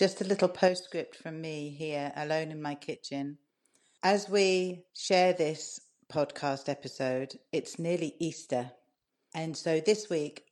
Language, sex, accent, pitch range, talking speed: English, female, British, 140-165 Hz, 135 wpm